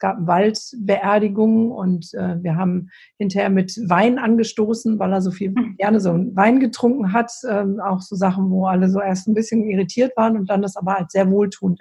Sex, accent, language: female, German, German